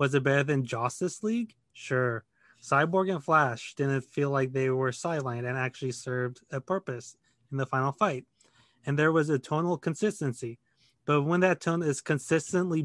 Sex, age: male, 20-39